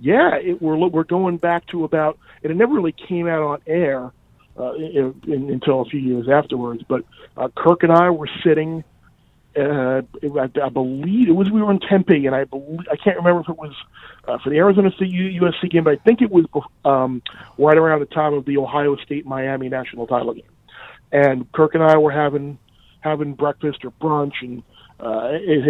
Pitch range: 135-160 Hz